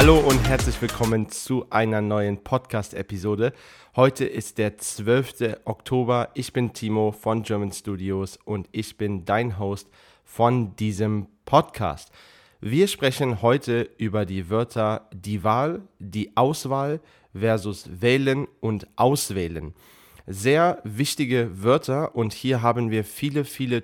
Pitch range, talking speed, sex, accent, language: 105-130 Hz, 125 wpm, male, German, German